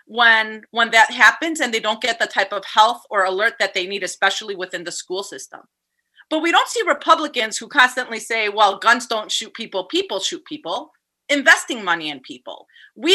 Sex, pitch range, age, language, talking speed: female, 215-320 Hz, 30-49, English, 195 wpm